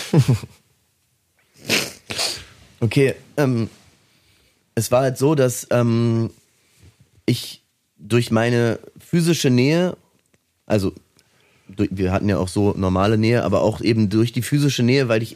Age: 30-49